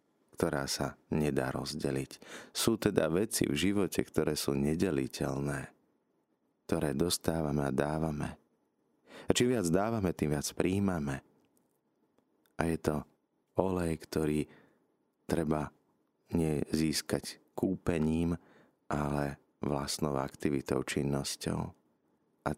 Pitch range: 70-80 Hz